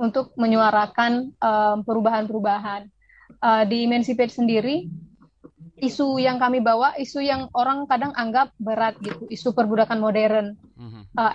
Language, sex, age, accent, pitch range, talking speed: Indonesian, female, 20-39, native, 215-245 Hz, 120 wpm